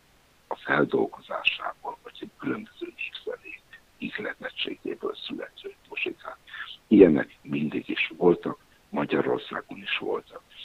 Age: 60-79